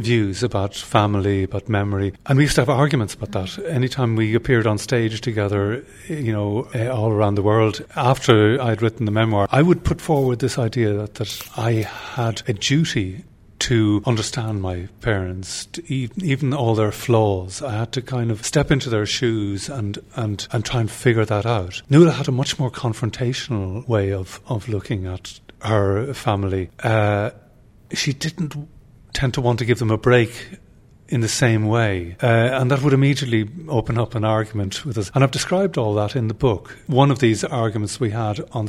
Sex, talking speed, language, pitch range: male, 190 wpm, English, 105-130 Hz